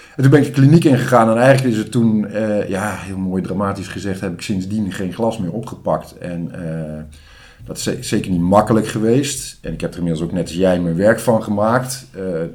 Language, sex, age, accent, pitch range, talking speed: Dutch, male, 50-69, Dutch, 85-110 Hz, 225 wpm